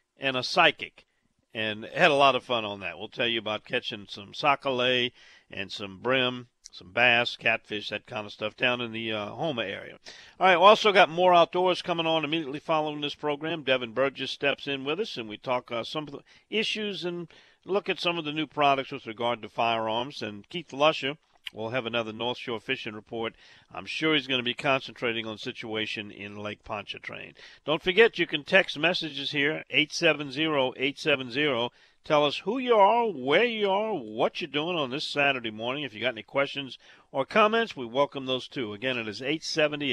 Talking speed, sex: 205 wpm, male